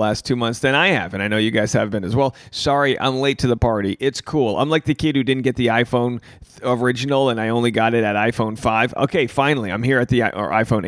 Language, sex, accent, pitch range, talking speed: English, male, American, 110-140 Hz, 280 wpm